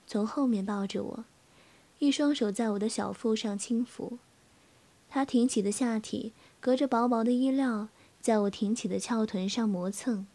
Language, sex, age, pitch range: Chinese, female, 20-39, 210-245 Hz